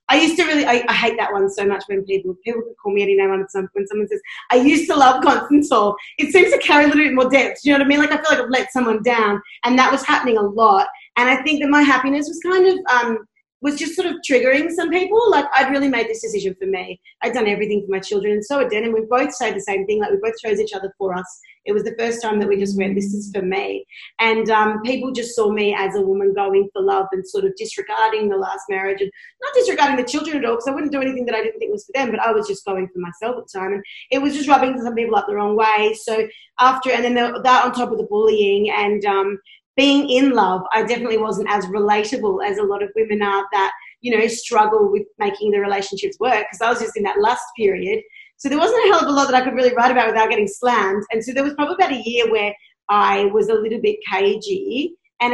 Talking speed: 275 wpm